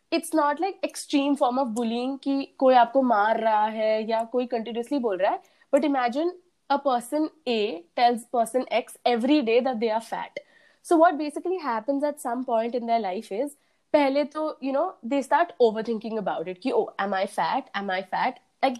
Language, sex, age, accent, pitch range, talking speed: Hindi, female, 20-39, native, 230-295 Hz, 200 wpm